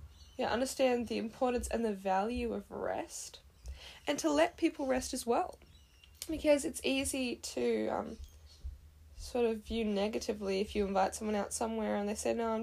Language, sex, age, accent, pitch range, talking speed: English, female, 10-29, Australian, 215-280 Hz, 170 wpm